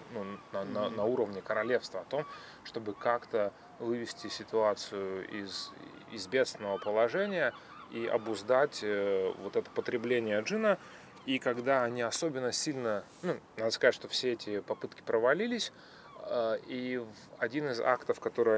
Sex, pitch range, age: male, 110-170 Hz, 30-49